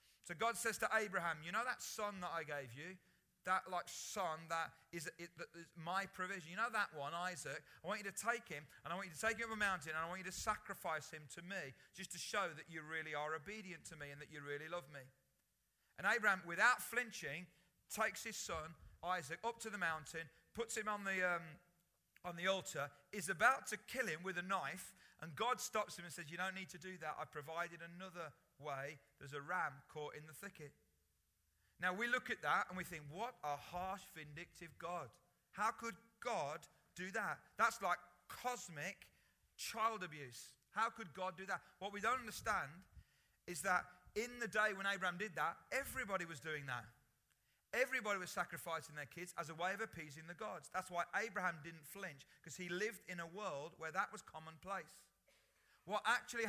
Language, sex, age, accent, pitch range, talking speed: English, male, 40-59, British, 160-205 Hz, 205 wpm